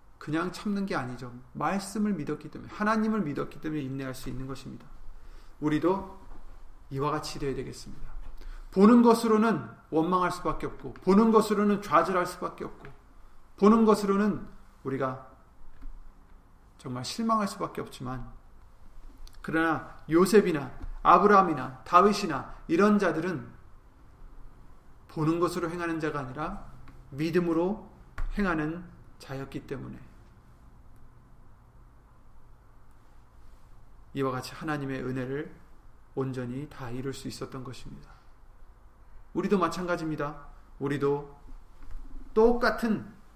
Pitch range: 125-175 Hz